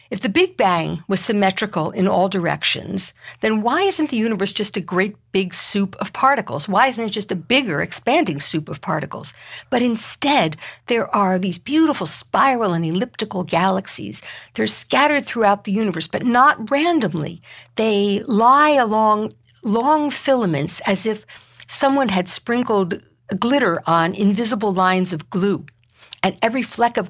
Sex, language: female, English